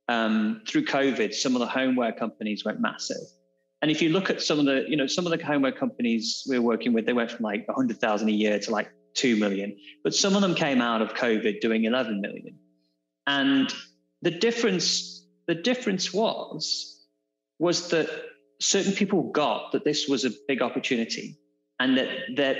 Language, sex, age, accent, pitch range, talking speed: English, male, 30-49, British, 105-150 Hz, 190 wpm